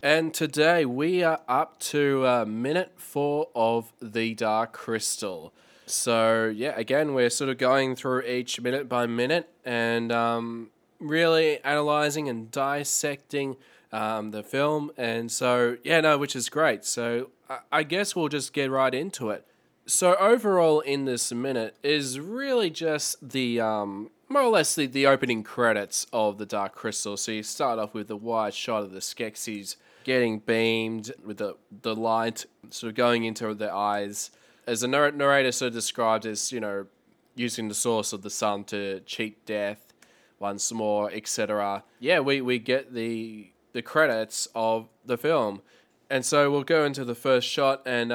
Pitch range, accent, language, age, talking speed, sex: 110-140 Hz, Australian, English, 20-39, 170 wpm, male